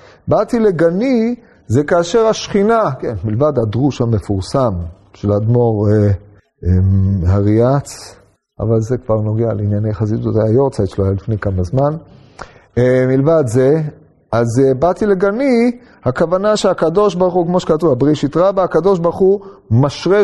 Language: Hebrew